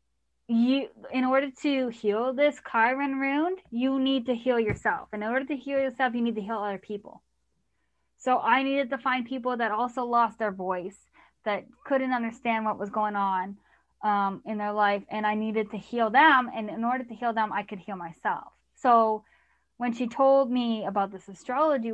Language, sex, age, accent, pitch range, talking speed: English, female, 20-39, American, 210-250 Hz, 190 wpm